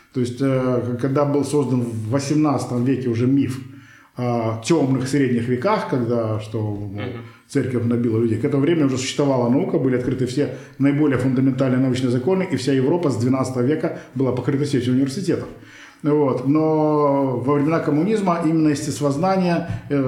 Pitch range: 125-145 Hz